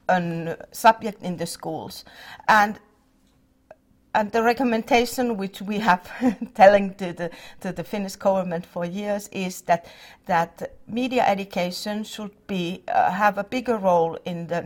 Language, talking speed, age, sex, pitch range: English, 145 wpm, 50-69, female, 180-220 Hz